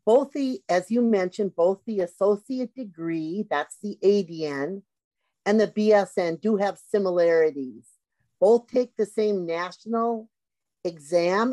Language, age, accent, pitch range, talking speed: English, 50-69, American, 170-220 Hz, 125 wpm